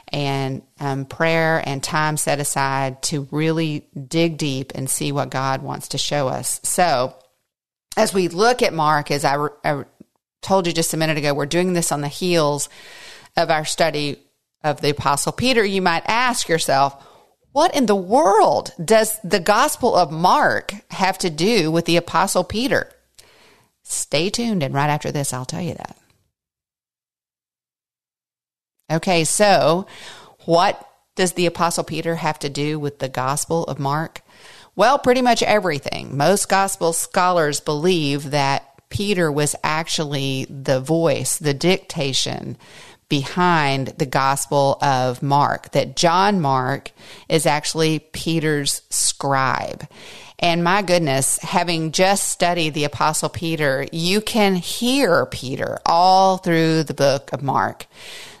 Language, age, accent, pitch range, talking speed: English, 40-59, American, 145-180 Hz, 145 wpm